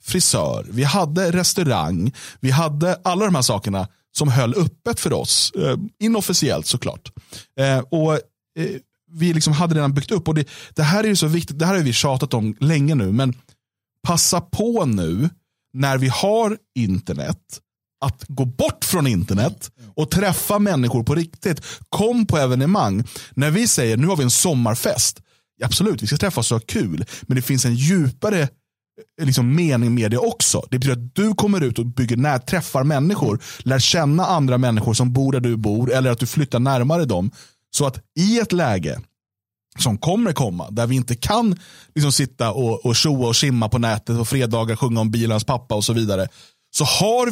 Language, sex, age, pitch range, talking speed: Swedish, male, 30-49, 120-165 Hz, 180 wpm